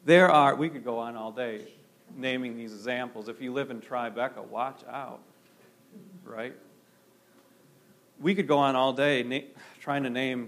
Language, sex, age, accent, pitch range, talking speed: English, male, 40-59, American, 125-170 Hz, 160 wpm